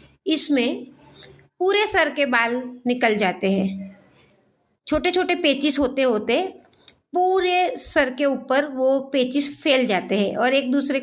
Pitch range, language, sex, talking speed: 235-310 Hz, Hindi, female, 135 wpm